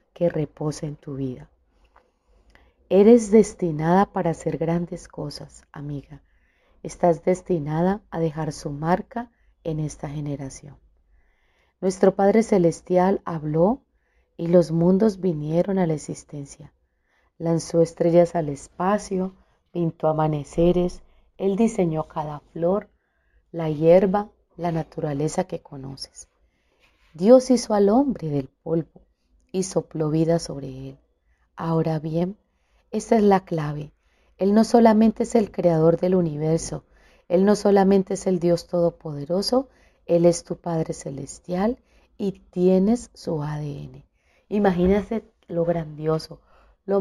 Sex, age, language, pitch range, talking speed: female, 30-49, Spanish, 155-190 Hz, 120 wpm